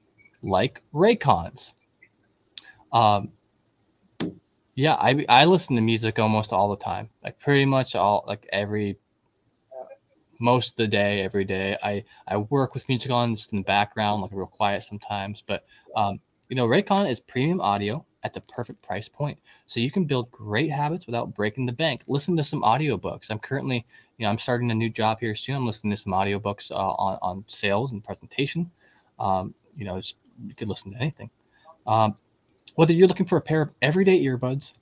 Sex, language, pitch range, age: male, English, 105-135 Hz, 20-39